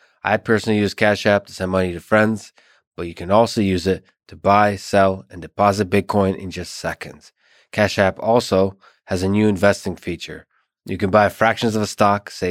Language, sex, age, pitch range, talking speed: English, male, 20-39, 95-105 Hz, 195 wpm